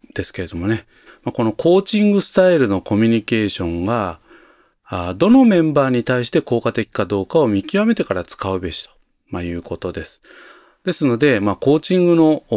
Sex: male